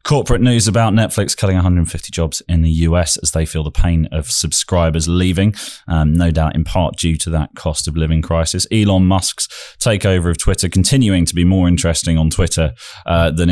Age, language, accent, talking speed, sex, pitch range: 20-39, English, British, 195 wpm, male, 80-105 Hz